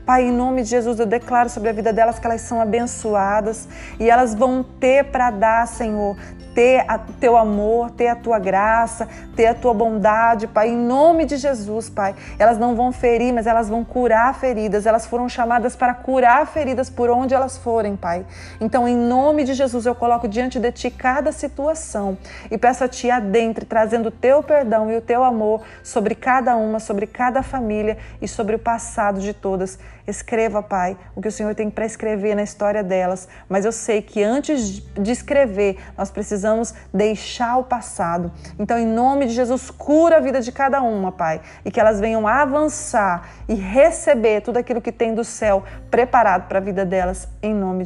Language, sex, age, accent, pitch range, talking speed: Portuguese, female, 30-49, Brazilian, 210-245 Hz, 190 wpm